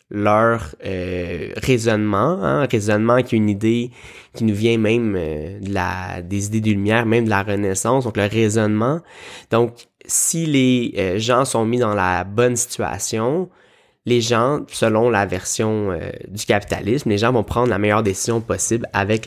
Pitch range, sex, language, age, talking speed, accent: 100-125 Hz, male, French, 20-39, 170 wpm, Canadian